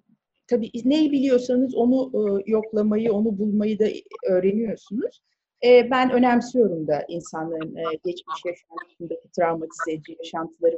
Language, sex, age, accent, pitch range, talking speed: Turkish, female, 40-59, native, 220-310 Hz, 115 wpm